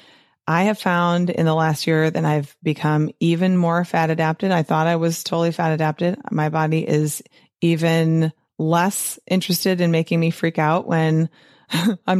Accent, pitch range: American, 150-180 Hz